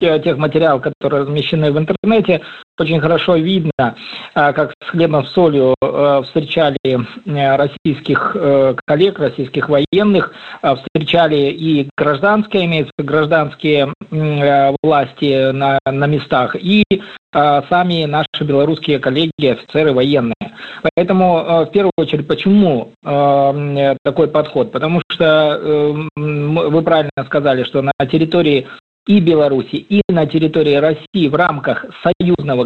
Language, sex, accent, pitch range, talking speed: Russian, male, native, 140-170 Hz, 105 wpm